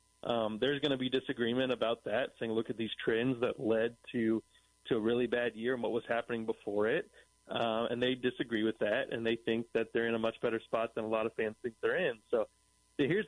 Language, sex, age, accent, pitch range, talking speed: English, male, 30-49, American, 115-130 Hz, 240 wpm